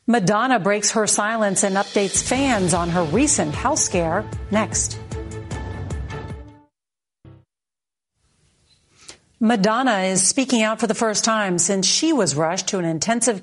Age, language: 40-59, English